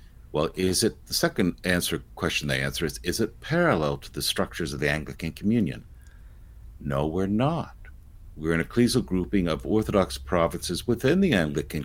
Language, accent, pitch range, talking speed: English, American, 75-100 Hz, 165 wpm